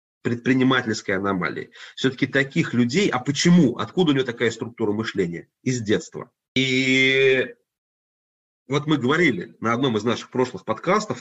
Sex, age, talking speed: male, 30-49, 135 wpm